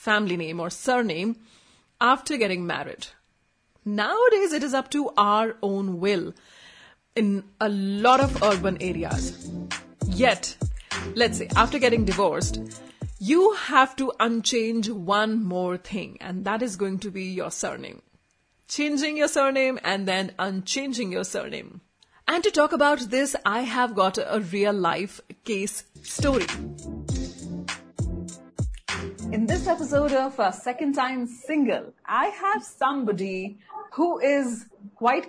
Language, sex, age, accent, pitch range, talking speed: Hindi, female, 30-49, native, 190-265 Hz, 130 wpm